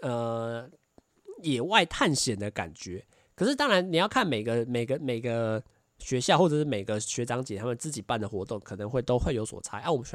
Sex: male